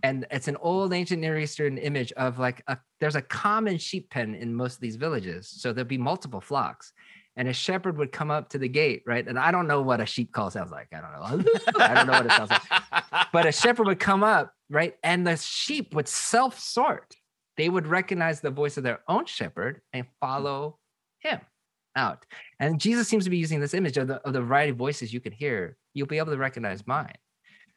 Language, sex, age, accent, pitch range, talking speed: English, male, 20-39, American, 120-165 Hz, 225 wpm